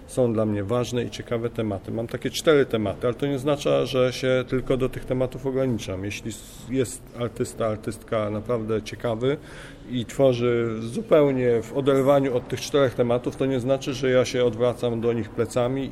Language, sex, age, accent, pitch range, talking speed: Polish, male, 40-59, native, 105-125 Hz, 175 wpm